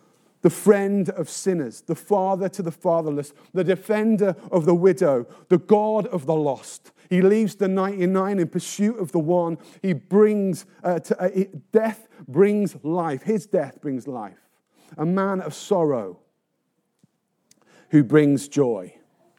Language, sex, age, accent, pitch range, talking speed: English, male, 40-59, British, 145-190 Hz, 140 wpm